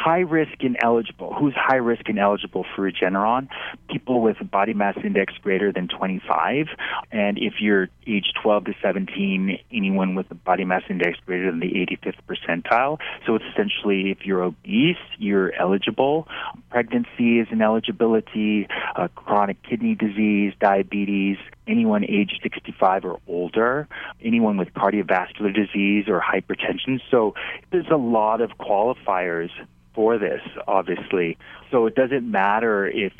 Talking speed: 140 wpm